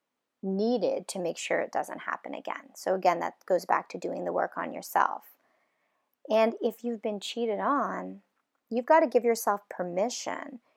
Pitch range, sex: 195-245 Hz, female